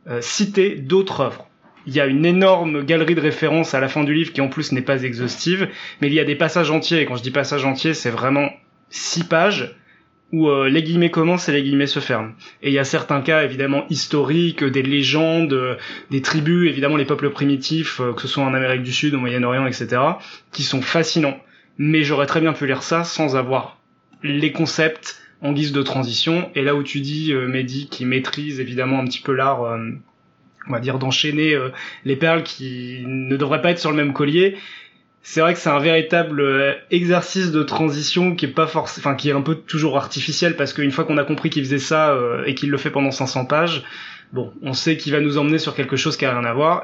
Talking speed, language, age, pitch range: 230 wpm, French, 20-39, 135-160 Hz